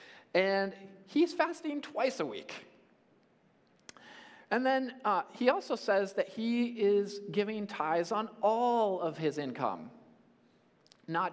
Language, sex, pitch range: English, male, 175-235 Hz